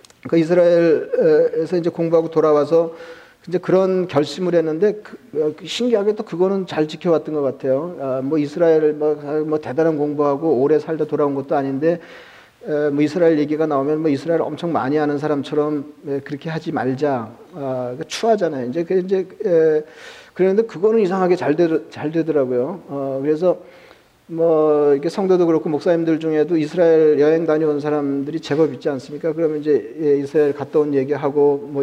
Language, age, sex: Korean, 40-59, male